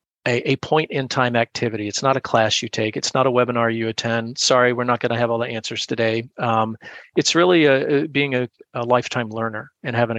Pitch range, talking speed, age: 115-135 Hz, 220 wpm, 40-59